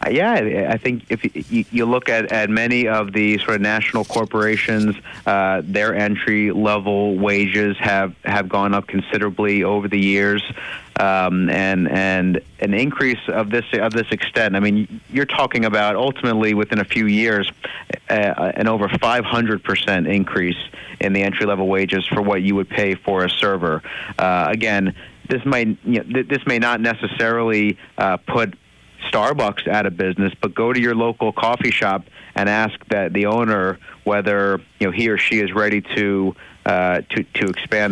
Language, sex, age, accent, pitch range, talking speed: English, male, 30-49, American, 95-110 Hz, 175 wpm